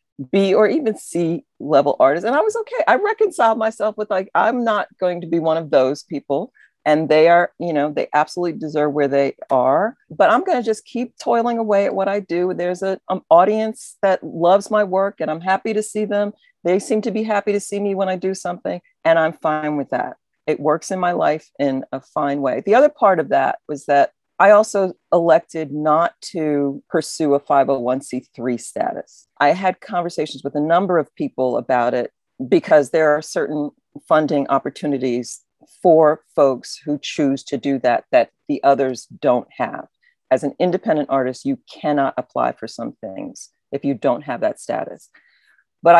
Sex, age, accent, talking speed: female, 40-59, American, 195 wpm